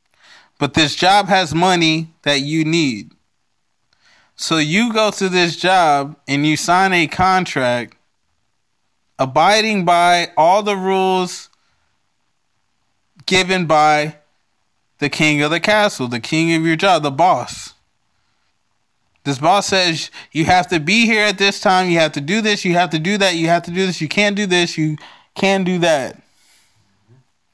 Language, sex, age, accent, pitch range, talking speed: English, male, 20-39, American, 160-200 Hz, 155 wpm